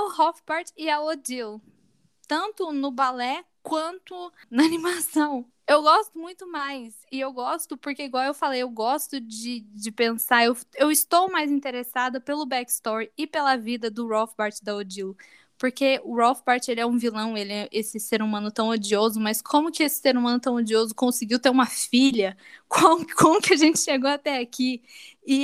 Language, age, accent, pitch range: Portuguese, 10-29, Brazilian, 230-310 Hz